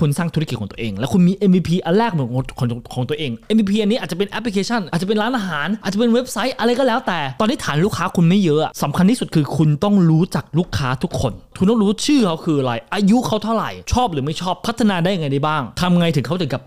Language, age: Thai, 20-39